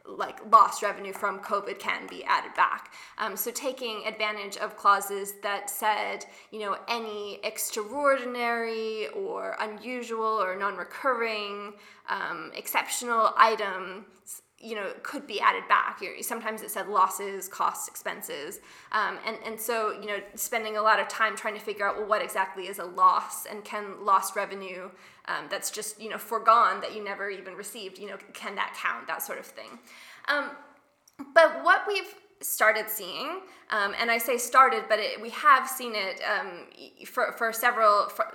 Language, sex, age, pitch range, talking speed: English, female, 20-39, 205-245 Hz, 170 wpm